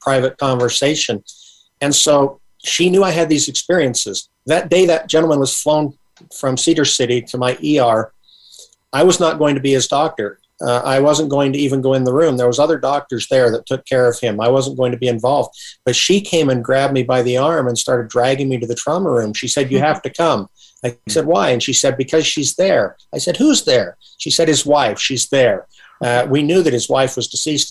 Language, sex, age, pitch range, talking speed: English, male, 50-69, 125-150 Hz, 230 wpm